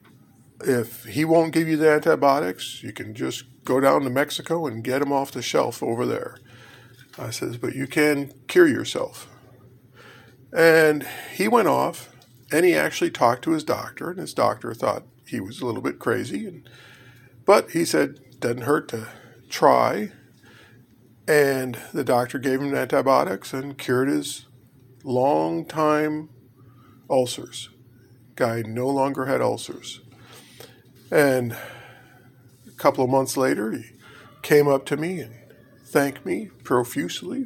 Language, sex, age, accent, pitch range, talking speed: English, male, 50-69, American, 125-145 Hz, 140 wpm